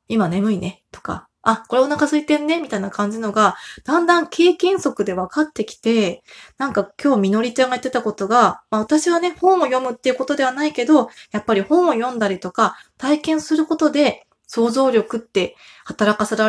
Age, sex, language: 20-39, female, Japanese